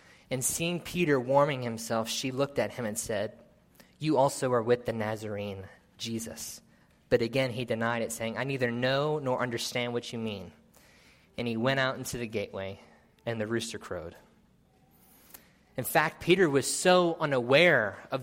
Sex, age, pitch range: male, 20-39, 115-140 Hz